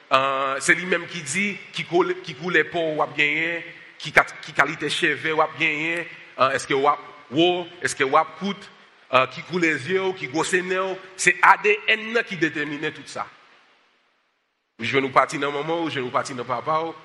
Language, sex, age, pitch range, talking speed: French, male, 40-59, 145-190 Hz, 130 wpm